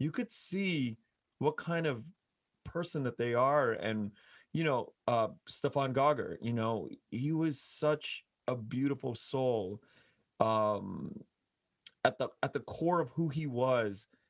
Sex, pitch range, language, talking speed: male, 115-140 Hz, English, 145 wpm